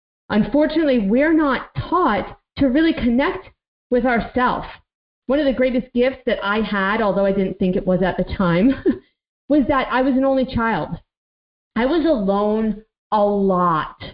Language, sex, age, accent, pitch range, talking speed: English, female, 40-59, American, 195-260 Hz, 160 wpm